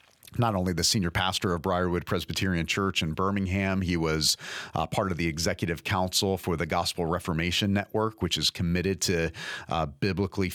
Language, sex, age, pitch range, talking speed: English, male, 40-59, 85-95 Hz, 170 wpm